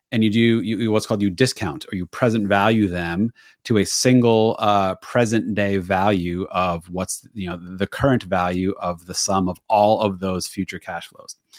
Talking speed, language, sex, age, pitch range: 195 wpm, English, male, 30-49, 95-110 Hz